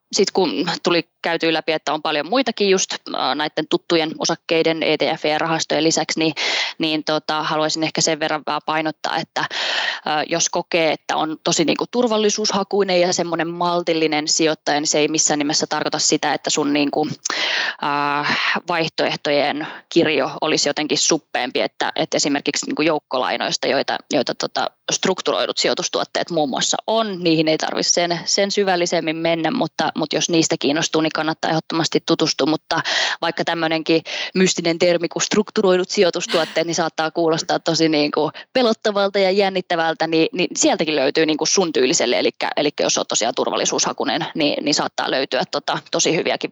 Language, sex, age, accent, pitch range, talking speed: Finnish, female, 20-39, native, 155-175 Hz, 145 wpm